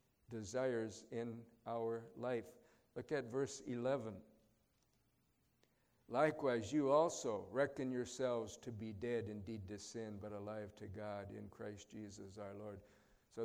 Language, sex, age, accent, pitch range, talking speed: English, male, 60-79, American, 110-135 Hz, 130 wpm